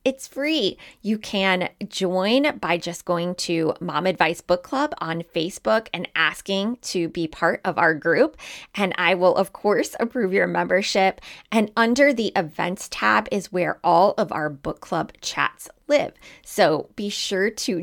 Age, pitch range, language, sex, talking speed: 20-39, 170-210 Hz, English, female, 165 wpm